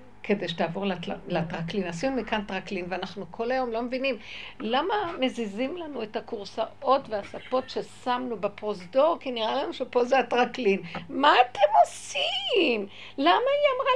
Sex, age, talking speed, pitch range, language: female, 60-79, 140 wpm, 190-250 Hz, Hebrew